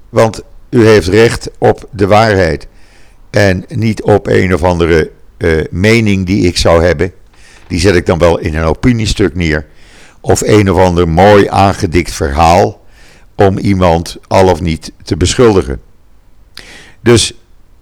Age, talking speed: 50-69, 145 wpm